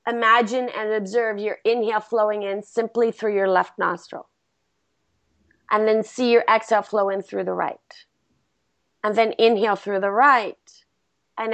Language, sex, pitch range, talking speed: English, female, 205-240 Hz, 150 wpm